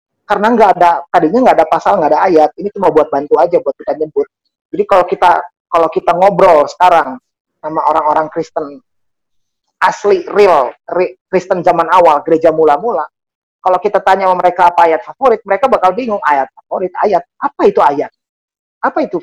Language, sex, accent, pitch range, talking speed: Indonesian, male, native, 170-215 Hz, 165 wpm